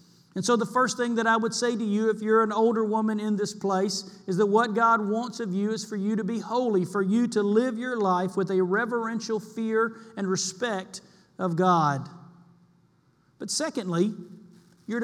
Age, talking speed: 50-69, 195 wpm